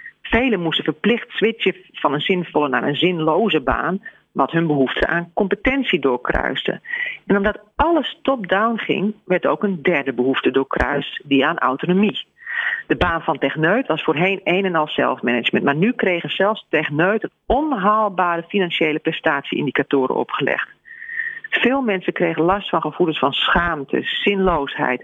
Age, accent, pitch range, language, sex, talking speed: 40-59, Dutch, 155-205 Hz, Dutch, female, 140 wpm